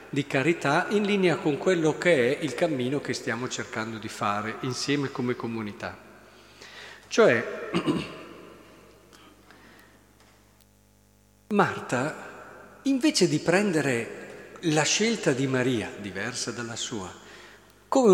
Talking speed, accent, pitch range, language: 105 wpm, native, 120-170 Hz, Italian